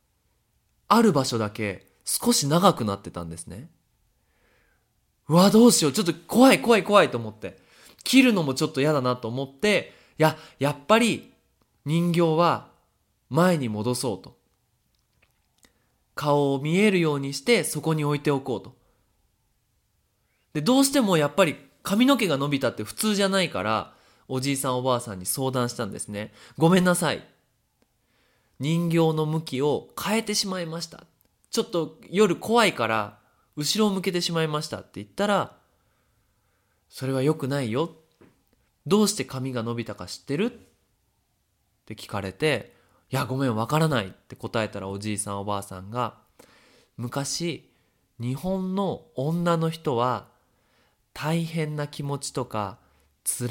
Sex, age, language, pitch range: male, 20-39, Japanese, 115-170 Hz